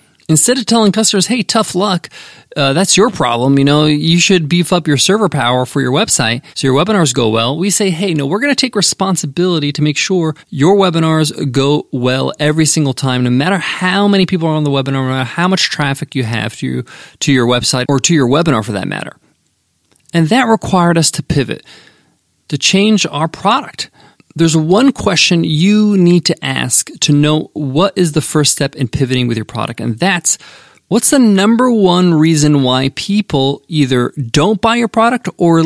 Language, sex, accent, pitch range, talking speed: English, male, American, 140-190 Hz, 200 wpm